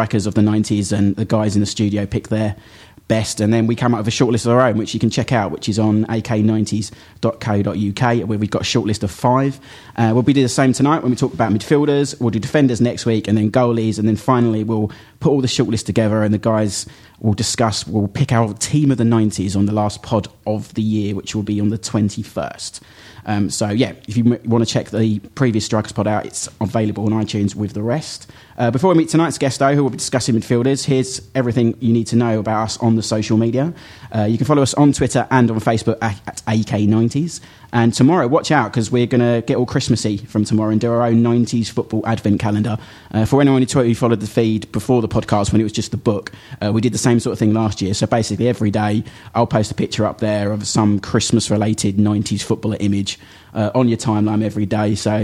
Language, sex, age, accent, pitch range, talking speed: English, male, 30-49, British, 105-120 Hz, 240 wpm